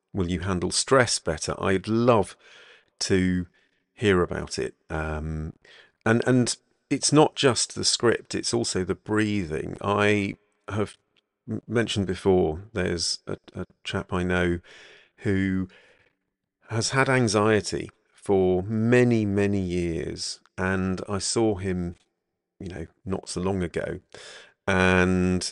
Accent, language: British, English